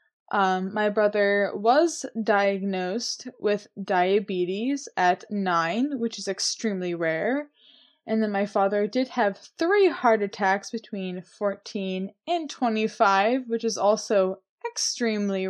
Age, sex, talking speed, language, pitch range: 10-29, female, 115 wpm, English, 195-245 Hz